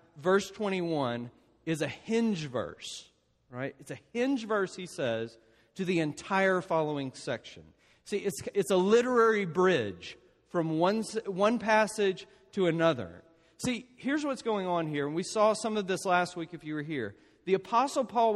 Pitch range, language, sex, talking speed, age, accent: 155-215 Hz, English, male, 165 wpm, 40-59, American